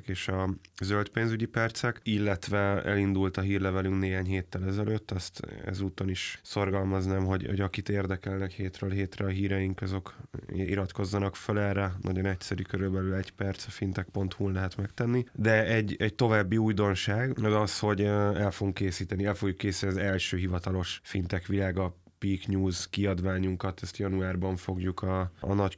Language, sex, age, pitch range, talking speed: Hungarian, male, 20-39, 95-105 Hz, 150 wpm